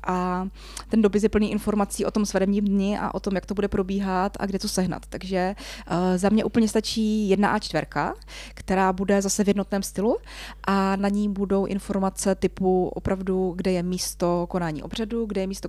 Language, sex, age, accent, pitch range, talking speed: Czech, female, 20-39, native, 185-210 Hz, 195 wpm